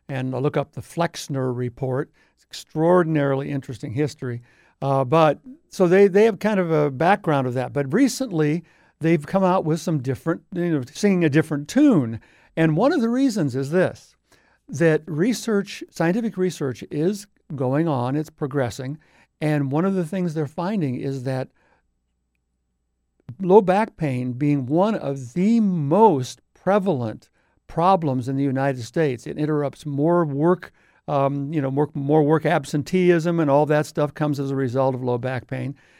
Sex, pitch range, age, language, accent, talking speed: male, 135-175 Hz, 60-79, English, American, 165 wpm